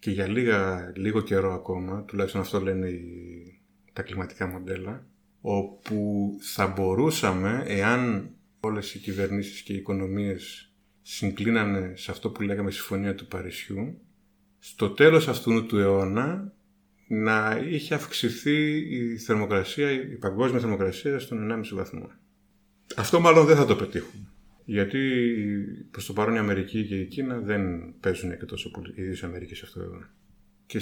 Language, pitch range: Greek, 95-115 Hz